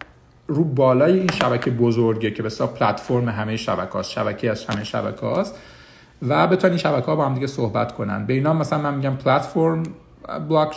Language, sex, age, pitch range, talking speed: Persian, male, 50-69, 115-135 Hz, 180 wpm